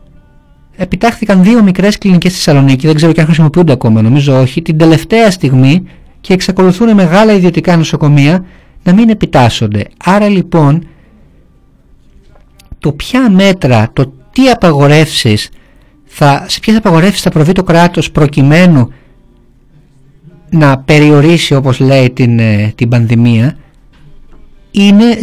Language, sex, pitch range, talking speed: Greek, male, 130-190 Hz, 120 wpm